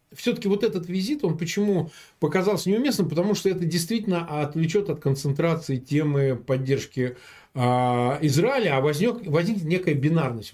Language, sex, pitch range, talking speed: Russian, male, 130-190 Hz, 135 wpm